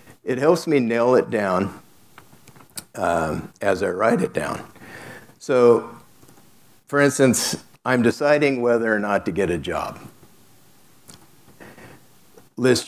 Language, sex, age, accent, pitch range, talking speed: English, male, 60-79, American, 100-125 Hz, 115 wpm